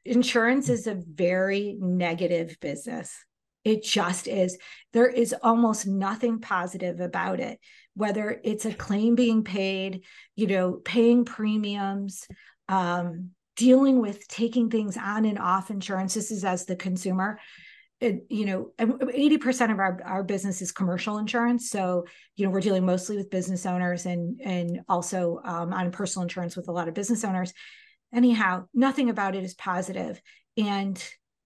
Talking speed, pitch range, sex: 150 wpm, 185-230 Hz, female